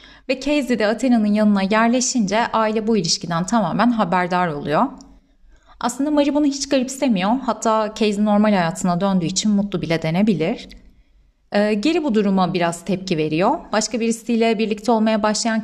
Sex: female